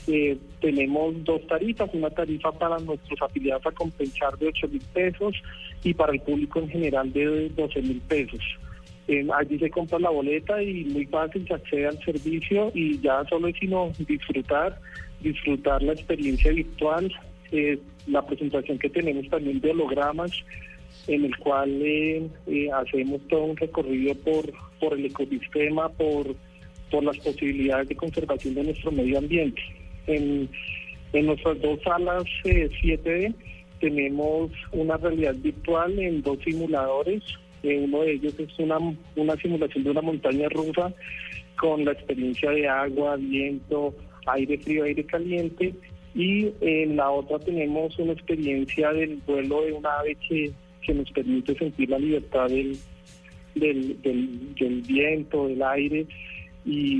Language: Spanish